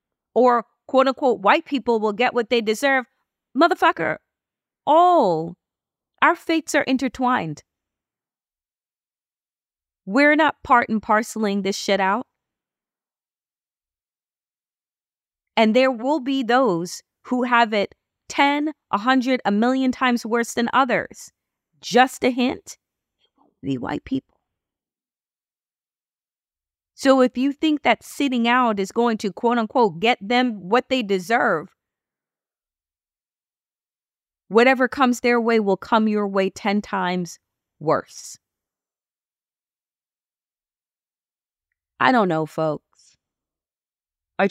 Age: 30-49